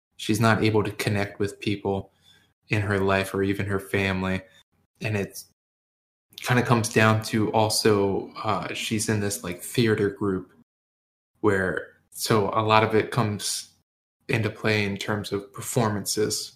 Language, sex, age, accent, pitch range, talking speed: English, male, 20-39, American, 95-110 Hz, 150 wpm